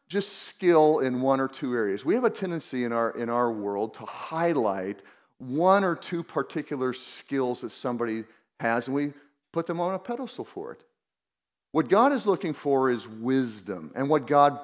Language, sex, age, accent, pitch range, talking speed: English, male, 40-59, American, 120-160 Hz, 185 wpm